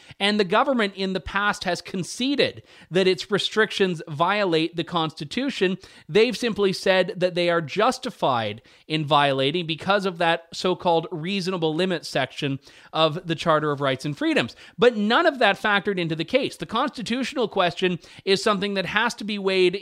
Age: 30-49